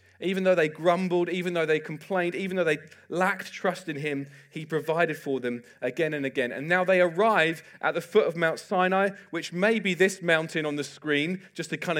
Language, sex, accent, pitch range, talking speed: English, male, British, 120-175 Hz, 215 wpm